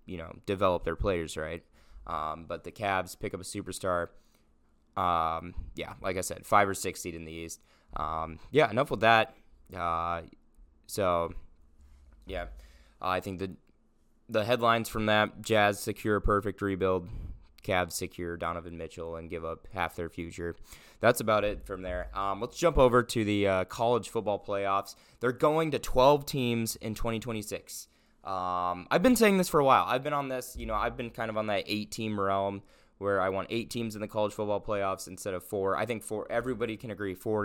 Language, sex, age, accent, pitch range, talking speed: English, male, 20-39, American, 90-110 Hz, 195 wpm